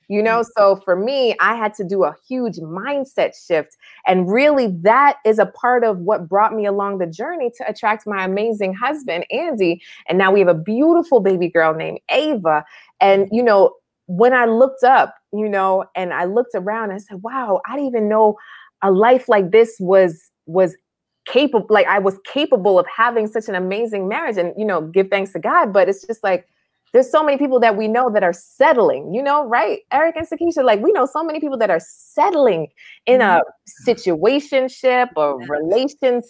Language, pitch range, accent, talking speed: English, 185-250 Hz, American, 200 wpm